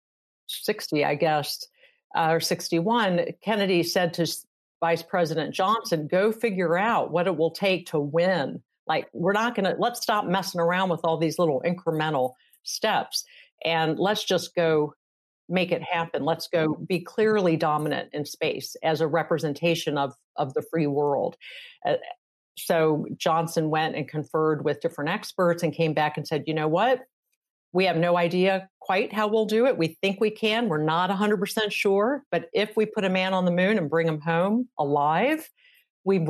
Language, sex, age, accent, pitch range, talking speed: English, female, 50-69, American, 160-195 Hz, 180 wpm